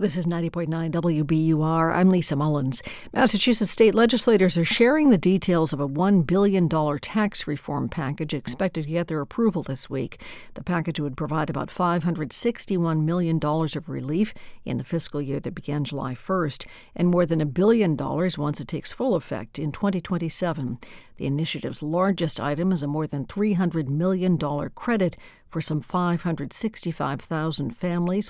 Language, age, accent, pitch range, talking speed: English, 60-79, American, 150-185 Hz, 155 wpm